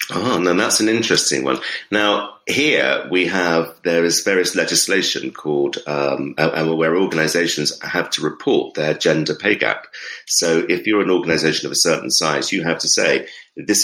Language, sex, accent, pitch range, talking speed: English, male, British, 80-105 Hz, 170 wpm